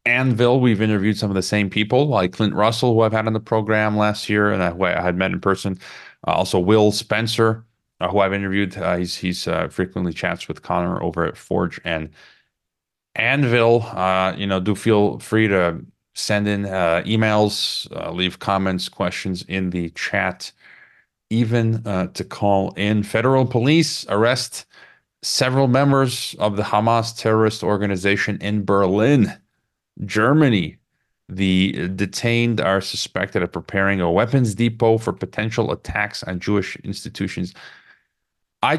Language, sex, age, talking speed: English, male, 30-49, 155 wpm